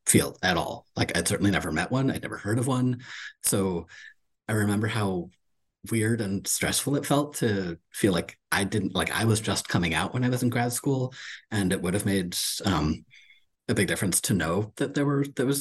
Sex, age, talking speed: male, 30-49, 215 wpm